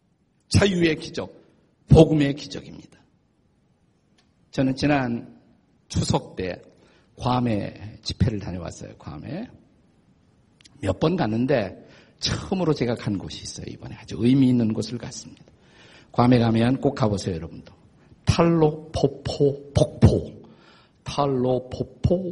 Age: 50-69